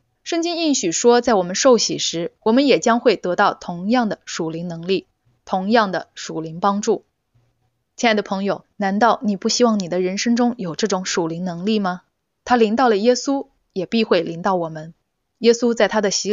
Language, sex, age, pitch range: Chinese, female, 20-39, 185-240 Hz